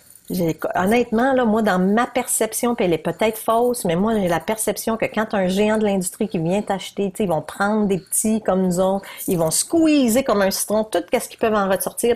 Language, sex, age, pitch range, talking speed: French, female, 40-59, 170-220 Hz, 225 wpm